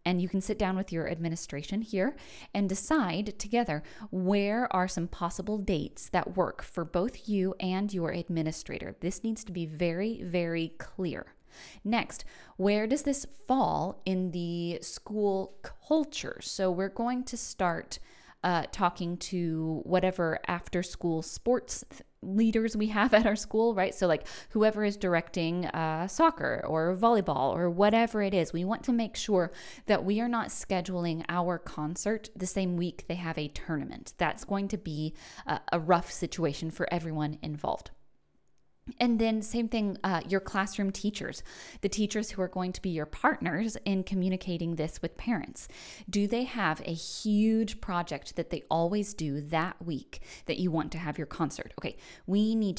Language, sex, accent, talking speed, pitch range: English, female, American, 165 wpm, 170-215 Hz